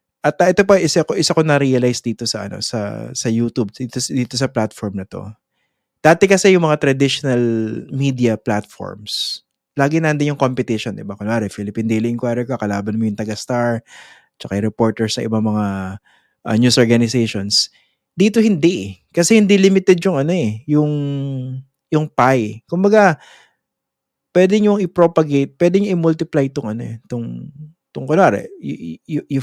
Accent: Filipino